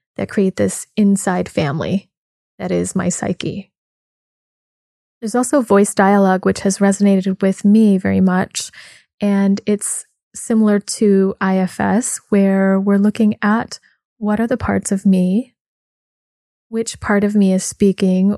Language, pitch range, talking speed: English, 190-210 Hz, 135 wpm